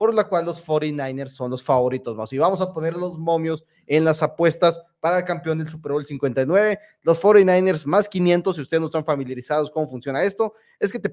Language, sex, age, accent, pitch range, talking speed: Spanish, male, 30-49, Mexican, 150-190 Hz, 220 wpm